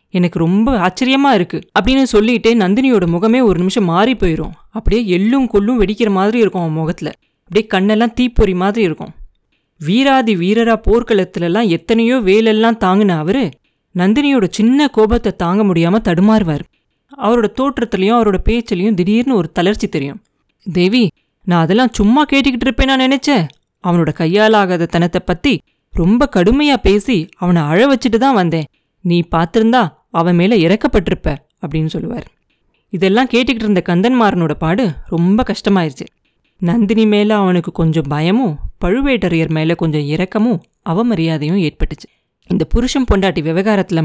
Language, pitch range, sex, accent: Tamil, 175-230 Hz, female, native